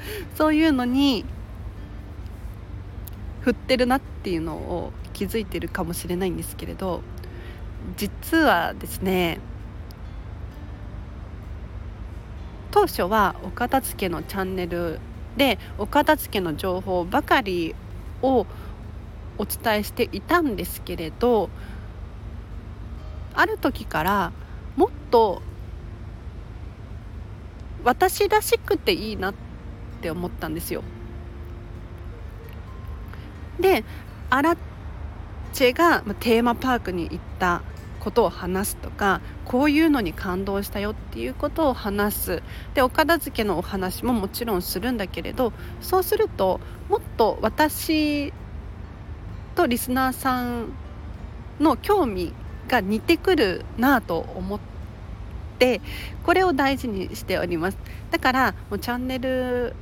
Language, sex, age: Japanese, female, 40-59